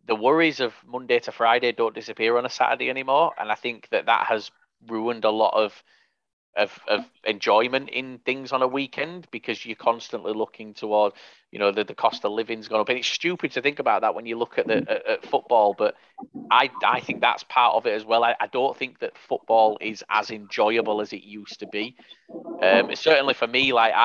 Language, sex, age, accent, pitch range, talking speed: English, male, 30-49, British, 105-125 Hz, 220 wpm